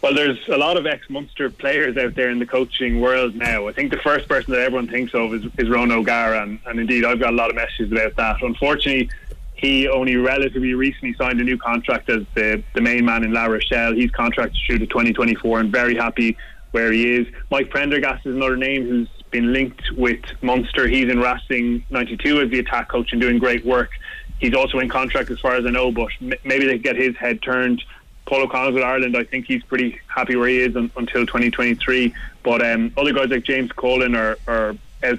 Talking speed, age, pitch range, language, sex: 220 wpm, 20-39, 115-130 Hz, English, male